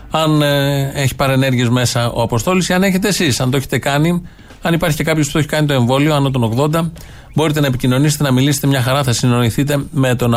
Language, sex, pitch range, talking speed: Greek, male, 115-150 Hz, 225 wpm